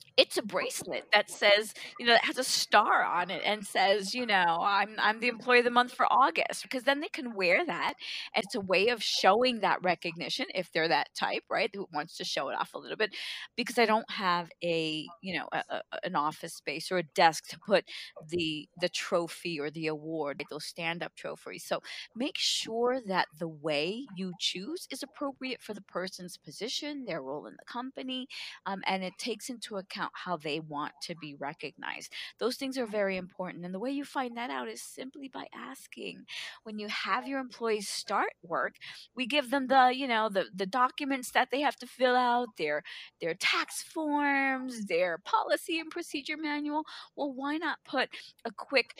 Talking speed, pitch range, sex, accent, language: 205 wpm, 185-265 Hz, female, American, English